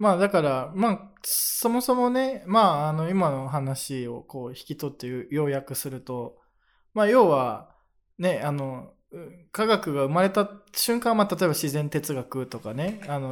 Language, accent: Japanese, native